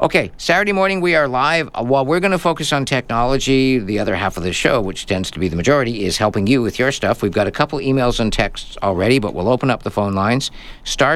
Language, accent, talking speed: English, American, 255 wpm